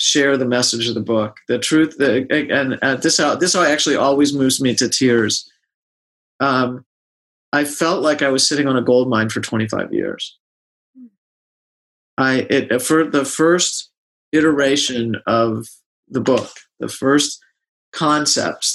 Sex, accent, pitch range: male, American, 115-140 Hz